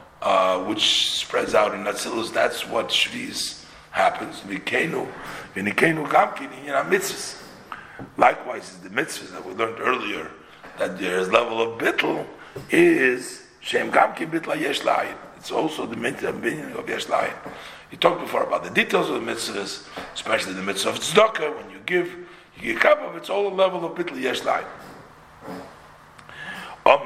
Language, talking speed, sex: English, 150 wpm, male